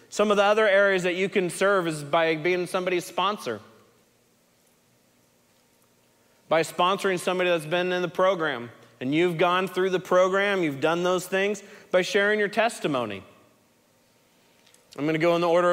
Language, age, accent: English, 30-49, American